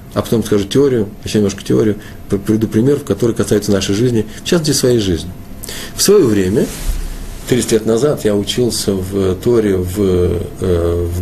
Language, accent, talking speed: Russian, native, 155 wpm